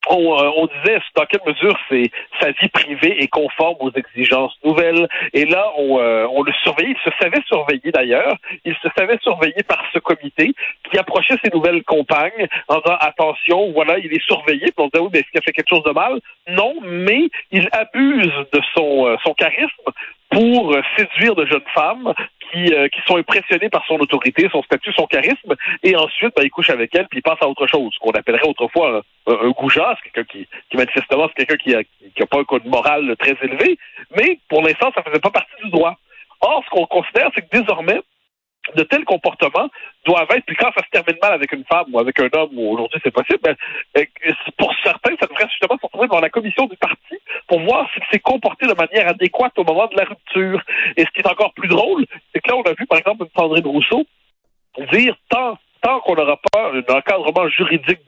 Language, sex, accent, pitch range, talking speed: French, male, French, 150-210 Hz, 225 wpm